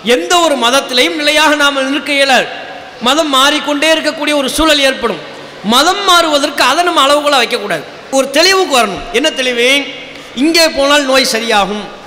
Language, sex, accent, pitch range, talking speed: English, male, Indian, 245-305 Hz, 155 wpm